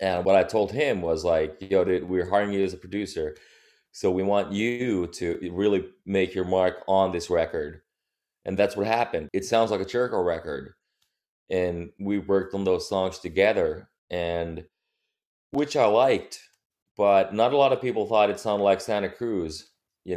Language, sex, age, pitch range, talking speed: English, male, 20-39, 90-100 Hz, 180 wpm